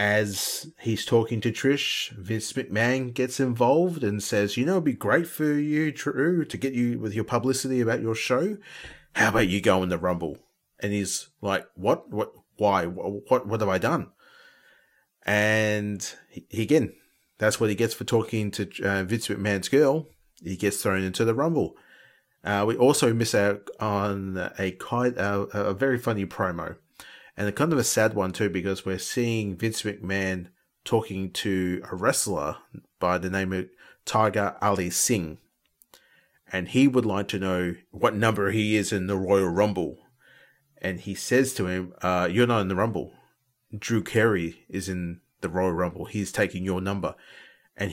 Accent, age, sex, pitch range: Australian, 30-49, male, 95-120 Hz